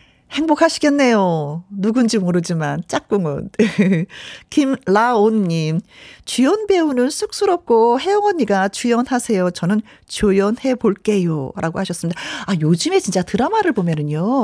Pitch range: 185-260 Hz